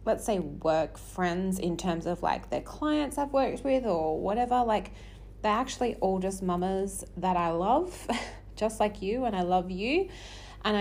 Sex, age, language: female, 30-49, English